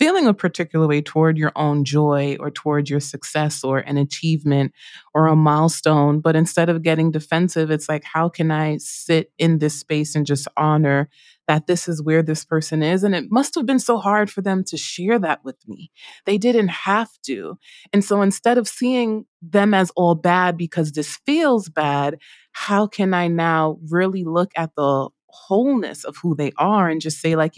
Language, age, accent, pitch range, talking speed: English, 20-39, American, 155-200 Hz, 195 wpm